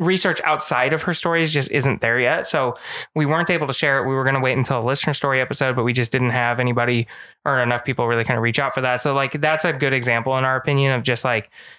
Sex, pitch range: male, 120-145 Hz